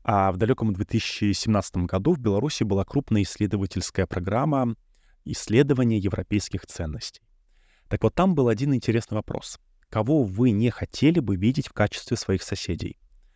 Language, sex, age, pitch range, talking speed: Russian, male, 20-39, 95-125 Hz, 140 wpm